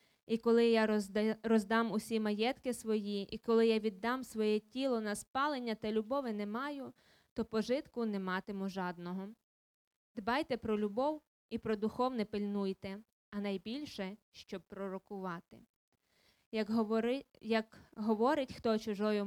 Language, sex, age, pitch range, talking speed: Ukrainian, female, 20-39, 205-255 Hz, 130 wpm